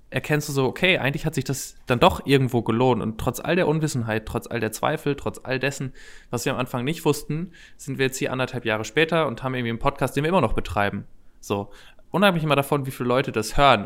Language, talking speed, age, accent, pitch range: German, 240 wpm, 20-39, German, 115-140 Hz